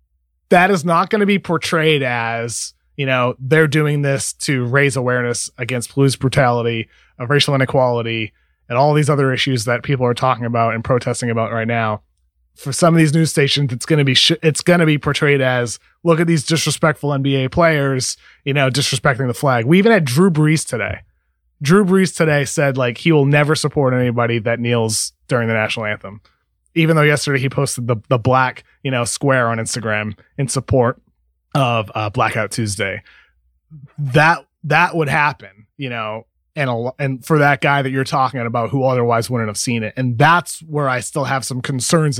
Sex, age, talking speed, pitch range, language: male, 30-49, 190 wpm, 120-155 Hz, English